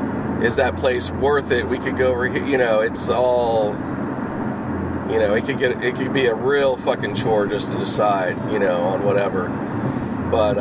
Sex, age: male, 30-49